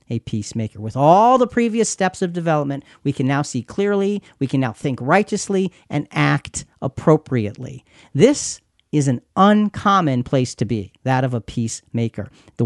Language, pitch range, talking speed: English, 125-185 Hz, 160 wpm